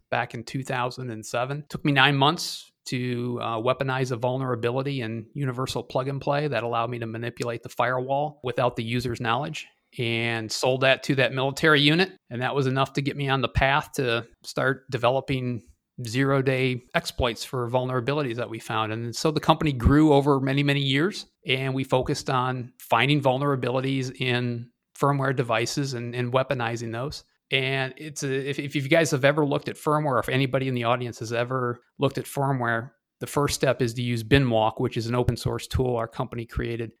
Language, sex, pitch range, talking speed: English, male, 115-140 Hz, 190 wpm